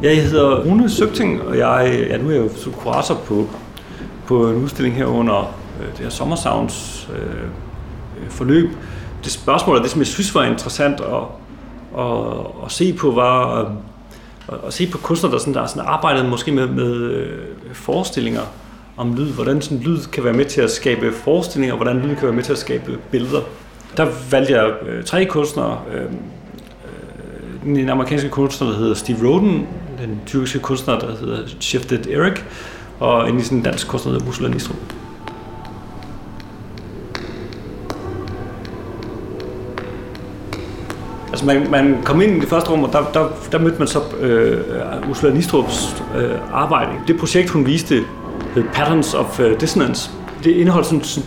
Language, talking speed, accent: Danish, 155 wpm, native